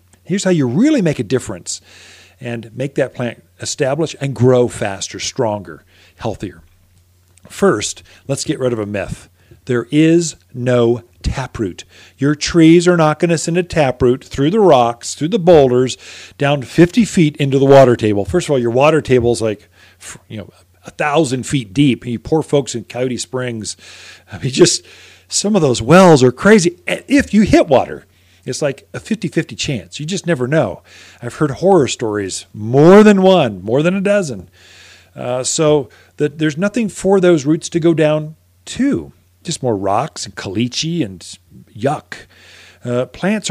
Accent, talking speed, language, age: American, 170 wpm, English, 40-59